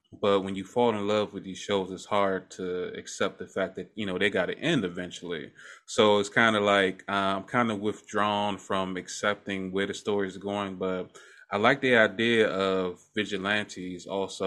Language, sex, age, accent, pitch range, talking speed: English, male, 20-39, American, 95-105 Hz, 200 wpm